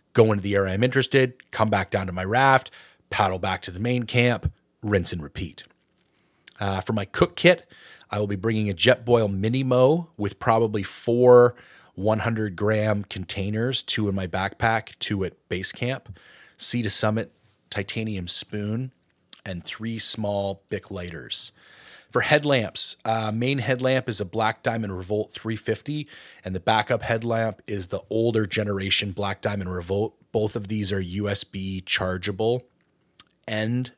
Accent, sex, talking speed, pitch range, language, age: American, male, 150 wpm, 95-115 Hz, English, 30-49